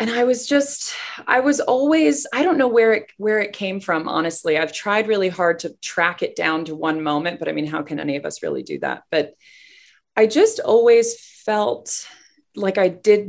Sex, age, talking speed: female, 20-39, 210 wpm